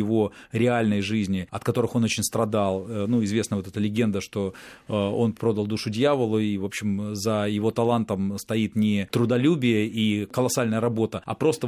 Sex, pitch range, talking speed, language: male, 100-120 Hz, 165 wpm, Russian